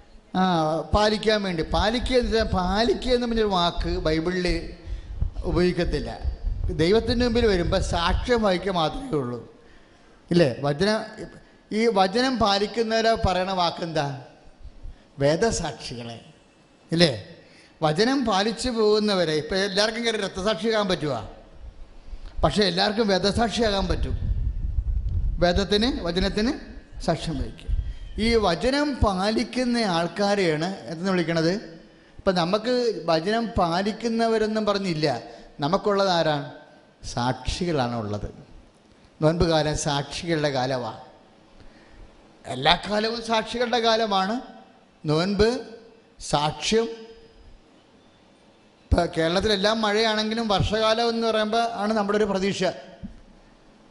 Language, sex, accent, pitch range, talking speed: English, male, Indian, 150-220 Hz, 40 wpm